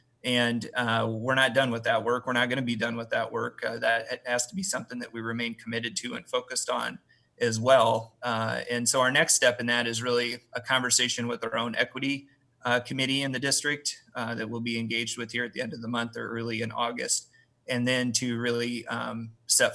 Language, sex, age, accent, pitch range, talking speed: English, male, 30-49, American, 115-125 Hz, 230 wpm